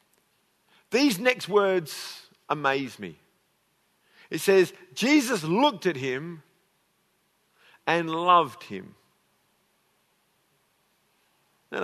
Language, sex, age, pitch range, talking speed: English, male, 50-69, 190-255 Hz, 75 wpm